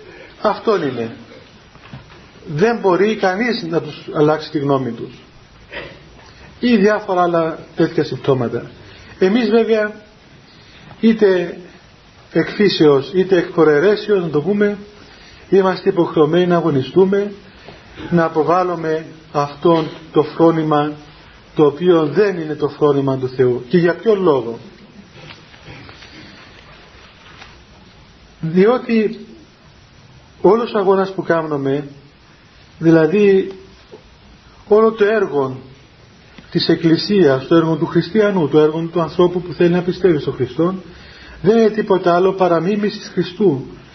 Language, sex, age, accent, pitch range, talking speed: Greek, male, 40-59, native, 155-195 Hz, 110 wpm